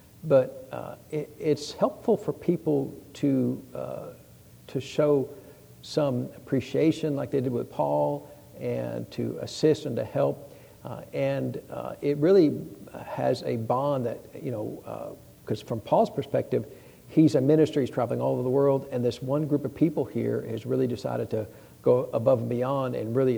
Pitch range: 115-140 Hz